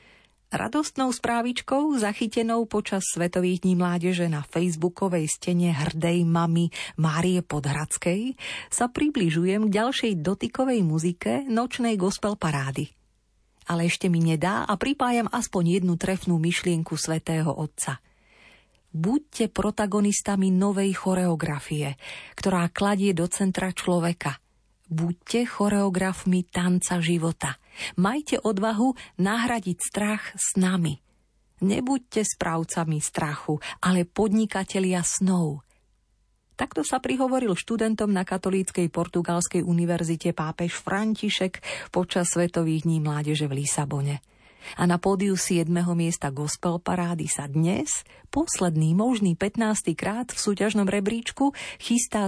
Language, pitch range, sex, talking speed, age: Slovak, 165-210 Hz, female, 105 wpm, 40-59